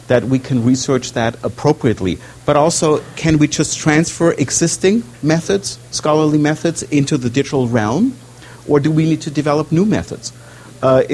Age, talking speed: 50-69, 155 wpm